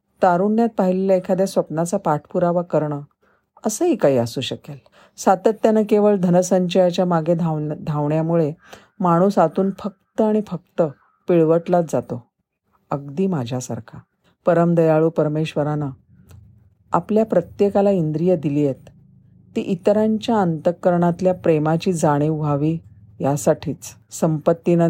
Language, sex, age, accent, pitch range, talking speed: Marathi, female, 40-59, native, 145-190 Hz, 95 wpm